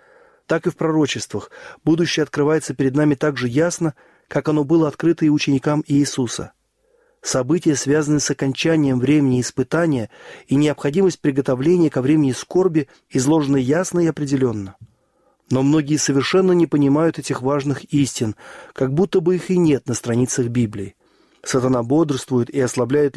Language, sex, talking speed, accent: Russian, male, 140 wpm, native